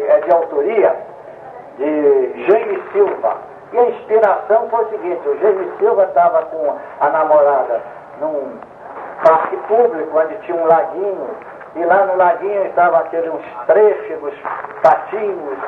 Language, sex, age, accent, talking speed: Portuguese, male, 60-79, Brazilian, 130 wpm